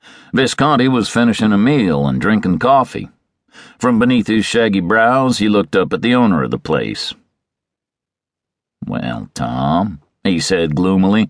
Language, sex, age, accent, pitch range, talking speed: English, male, 50-69, American, 95-125 Hz, 145 wpm